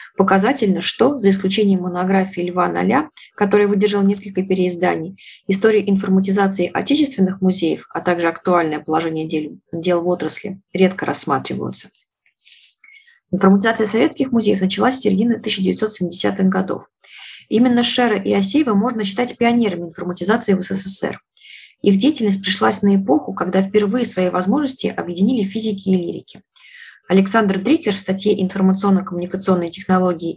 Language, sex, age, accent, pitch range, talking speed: Russian, female, 20-39, native, 180-215 Hz, 120 wpm